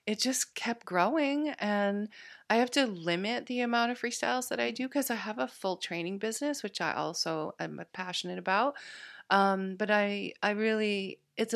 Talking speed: 180 wpm